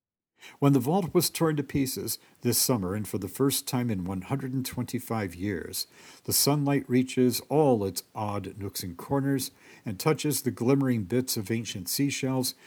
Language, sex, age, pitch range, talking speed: English, male, 50-69, 100-140 Hz, 160 wpm